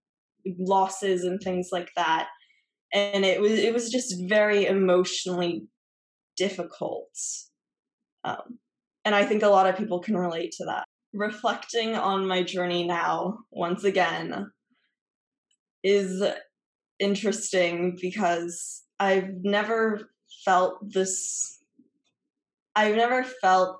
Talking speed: 110 wpm